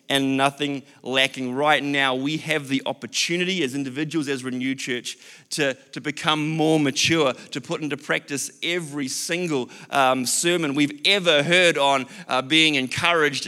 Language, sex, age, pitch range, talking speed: English, male, 30-49, 135-170 Hz, 150 wpm